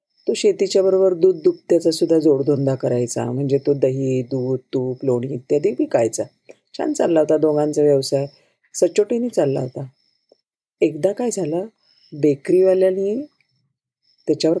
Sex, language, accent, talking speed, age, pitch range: female, Marathi, native, 115 wpm, 40-59, 145-220 Hz